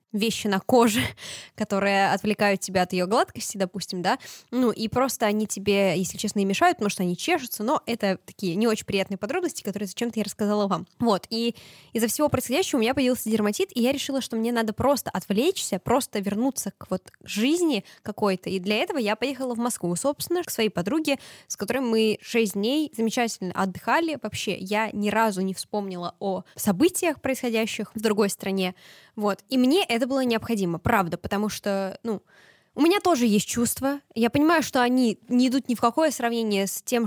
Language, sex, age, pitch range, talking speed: Russian, female, 10-29, 195-245 Hz, 190 wpm